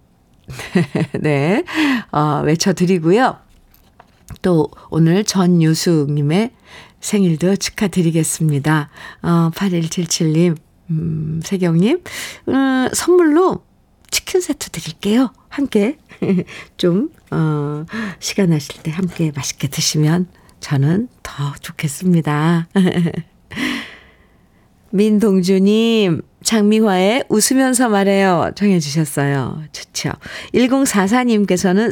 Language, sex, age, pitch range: Korean, female, 50-69, 160-220 Hz